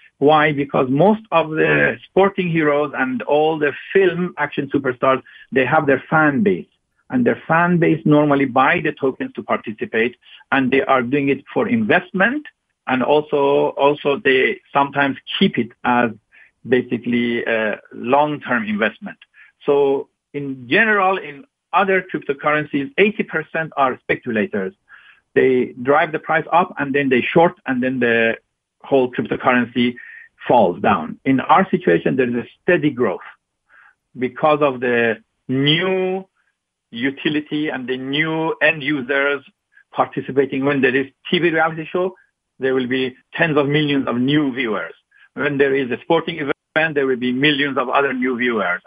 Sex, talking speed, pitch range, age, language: male, 145 wpm, 130-155 Hz, 50-69, English